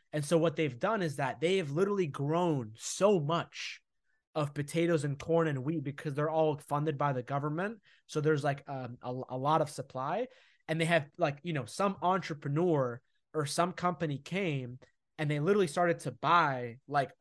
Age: 20-39